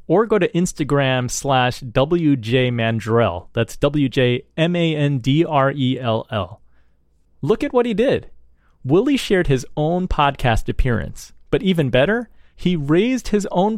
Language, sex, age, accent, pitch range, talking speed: English, male, 30-49, American, 125-175 Hz, 120 wpm